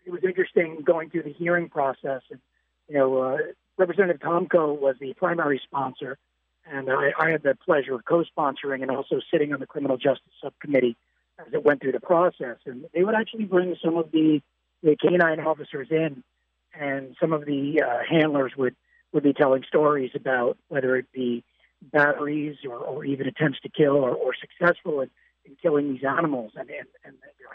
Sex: male